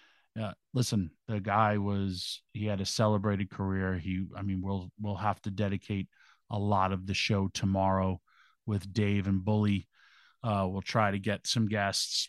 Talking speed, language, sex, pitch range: 170 wpm, English, male, 100-115 Hz